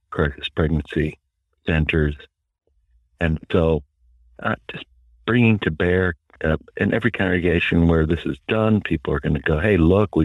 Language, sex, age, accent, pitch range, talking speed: English, male, 60-79, American, 75-95 Hz, 150 wpm